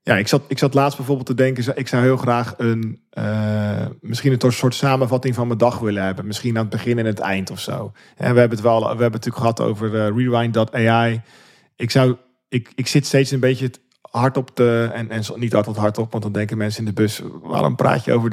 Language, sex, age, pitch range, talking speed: Dutch, male, 40-59, 110-125 Hz, 240 wpm